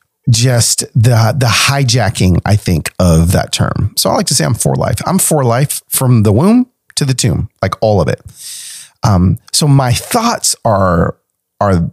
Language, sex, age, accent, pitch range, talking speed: English, male, 30-49, American, 110-145 Hz, 180 wpm